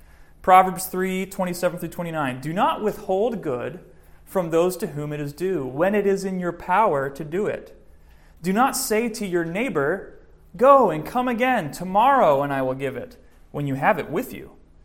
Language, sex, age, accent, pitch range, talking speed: English, male, 30-49, American, 130-195 Hz, 190 wpm